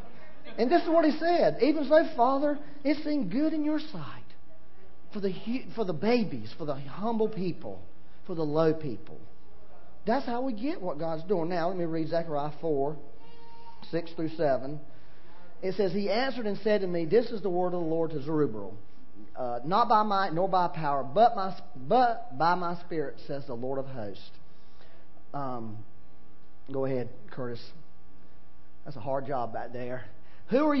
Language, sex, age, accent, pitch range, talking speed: English, male, 40-59, American, 140-240 Hz, 175 wpm